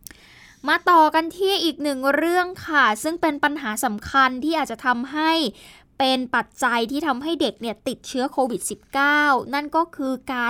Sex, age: female, 10-29